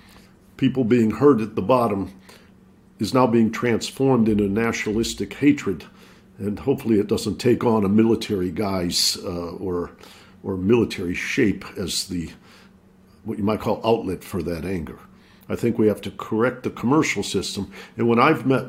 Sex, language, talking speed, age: male, English, 160 wpm, 50-69